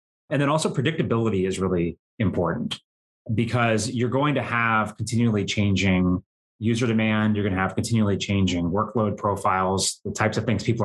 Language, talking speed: English, 160 wpm